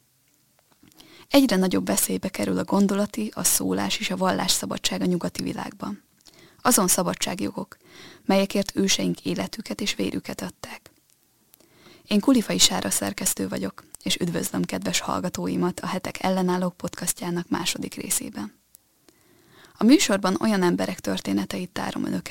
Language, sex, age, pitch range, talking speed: Hungarian, female, 20-39, 160-195 Hz, 120 wpm